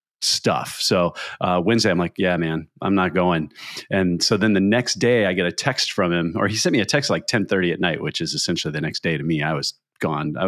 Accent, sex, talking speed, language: American, male, 260 wpm, English